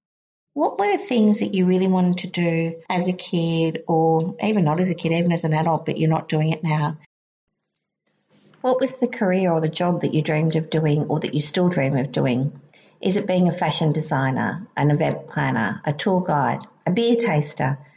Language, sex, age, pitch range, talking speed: English, female, 50-69, 155-185 Hz, 210 wpm